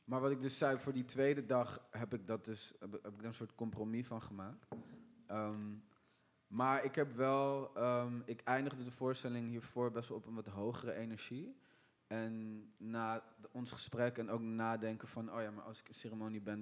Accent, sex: Dutch, male